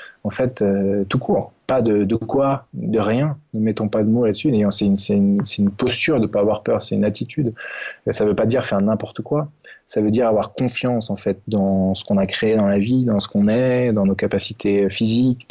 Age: 20-39